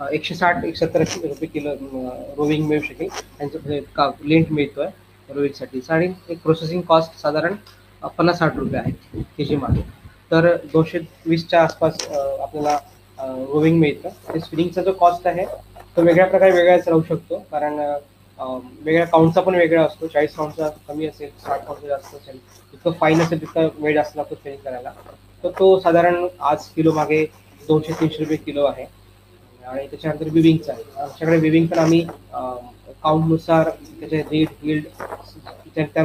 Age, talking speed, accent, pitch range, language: 20-39, 100 wpm, native, 140-165 Hz, Marathi